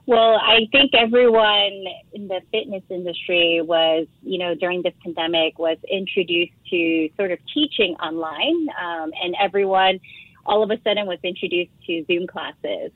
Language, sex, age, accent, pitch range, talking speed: English, female, 30-49, American, 170-210 Hz, 155 wpm